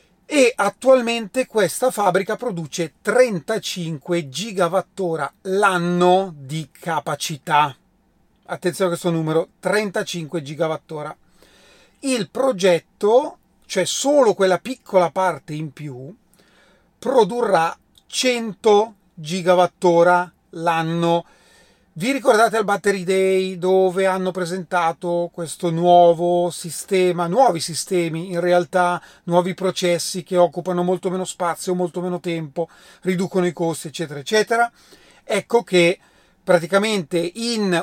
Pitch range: 165-195 Hz